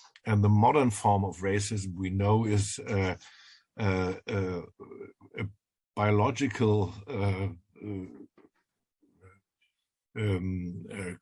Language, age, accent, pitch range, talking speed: English, 50-69, German, 100-120 Hz, 95 wpm